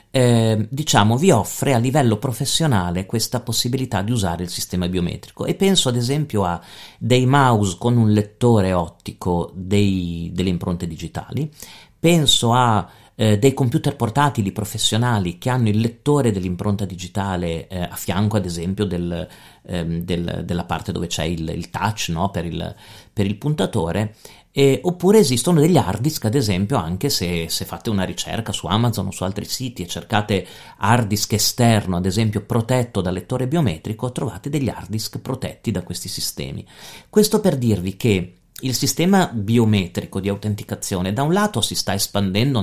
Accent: native